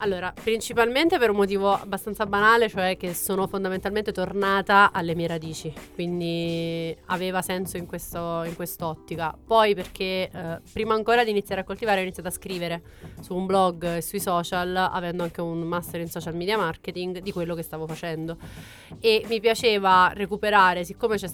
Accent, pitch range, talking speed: native, 175-200 Hz, 165 wpm